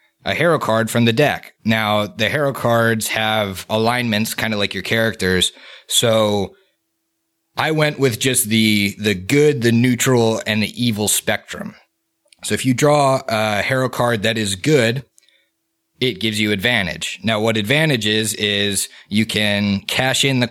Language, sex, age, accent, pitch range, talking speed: English, male, 30-49, American, 105-130 Hz, 160 wpm